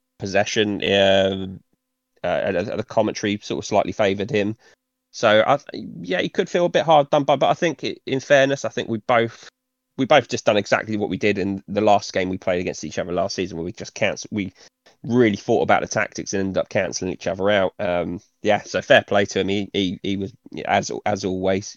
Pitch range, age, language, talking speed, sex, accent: 100-130 Hz, 20-39, English, 230 wpm, male, British